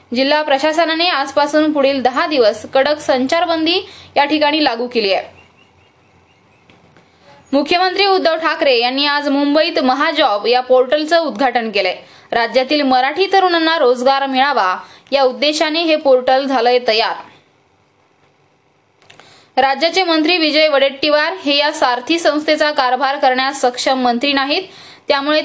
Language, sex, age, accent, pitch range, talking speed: Marathi, female, 20-39, native, 255-315 Hz, 110 wpm